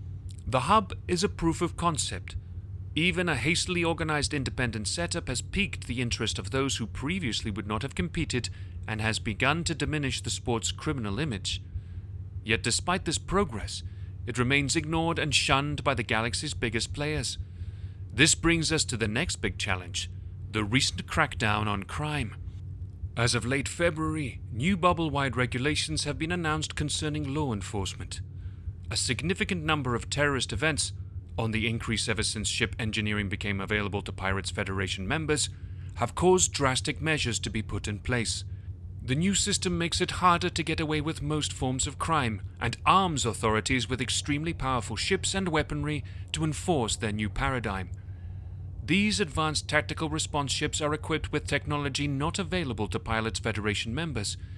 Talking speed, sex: 160 wpm, male